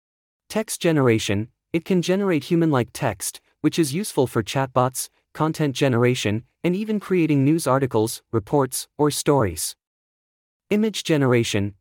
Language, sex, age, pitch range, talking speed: English, male, 30-49, 120-165 Hz, 120 wpm